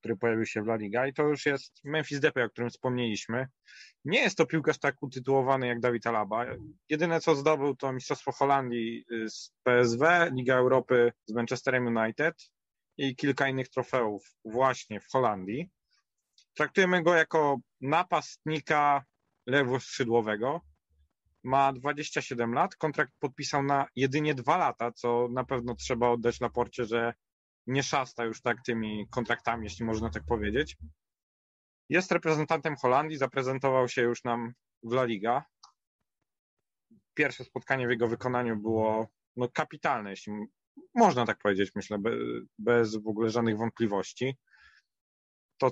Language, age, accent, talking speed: Polish, 30-49, native, 135 wpm